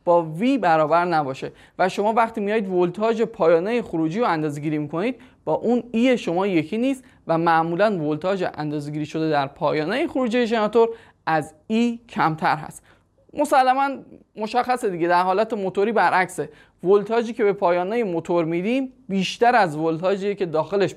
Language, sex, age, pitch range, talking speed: Persian, male, 20-39, 170-235 Hz, 145 wpm